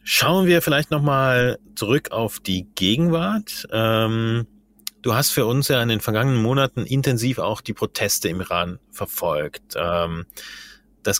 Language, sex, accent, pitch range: German, male, German, 105-130 Hz